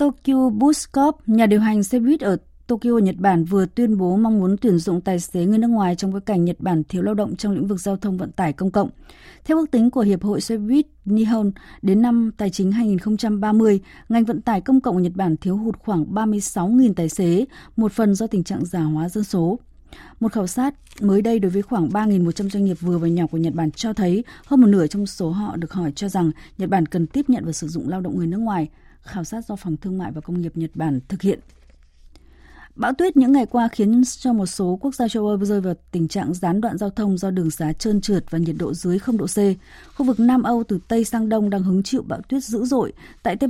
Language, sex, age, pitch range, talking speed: Vietnamese, female, 20-39, 175-225 Hz, 250 wpm